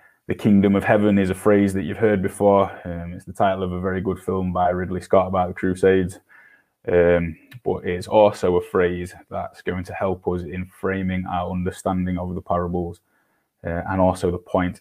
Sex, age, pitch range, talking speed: male, 10-29, 90-100 Hz, 200 wpm